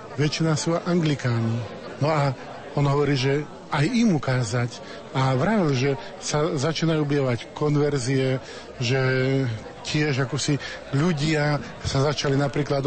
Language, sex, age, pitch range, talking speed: Slovak, male, 50-69, 140-175 Hz, 120 wpm